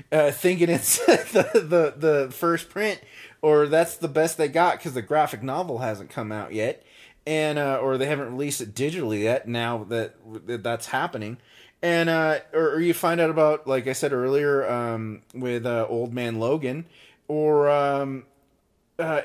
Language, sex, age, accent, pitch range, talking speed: English, male, 30-49, American, 120-165 Hz, 175 wpm